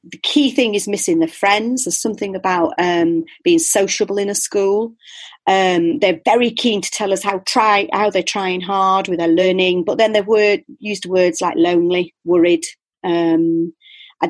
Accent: British